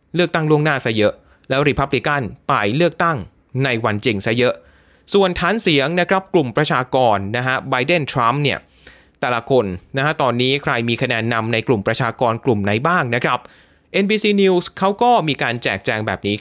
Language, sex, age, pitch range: Thai, male, 30-49, 115-180 Hz